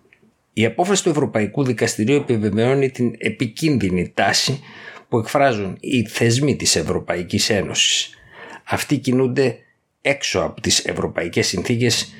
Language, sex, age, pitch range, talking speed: Greek, male, 50-69, 105-125 Hz, 115 wpm